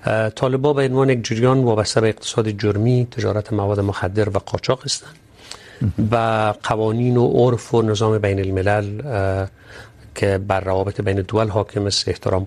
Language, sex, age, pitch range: Urdu, male, 50-69, 100-125 Hz